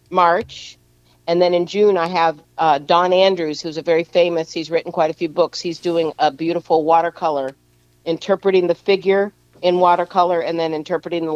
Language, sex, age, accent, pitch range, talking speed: English, female, 50-69, American, 150-190 Hz, 180 wpm